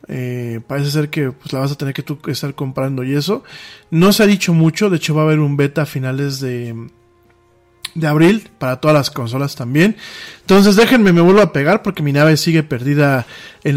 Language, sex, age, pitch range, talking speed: Spanish, male, 40-59, 135-170 Hz, 210 wpm